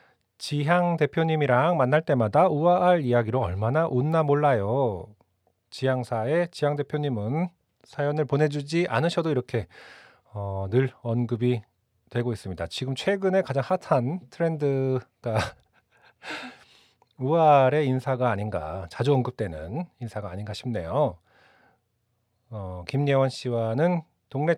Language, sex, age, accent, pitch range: Korean, male, 40-59, native, 115-160 Hz